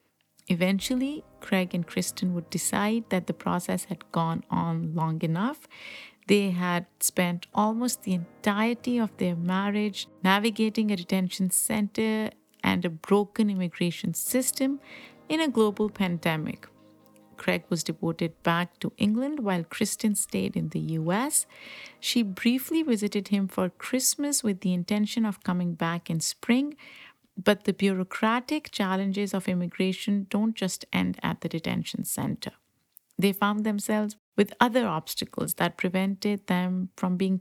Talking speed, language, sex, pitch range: 140 wpm, English, female, 185-235 Hz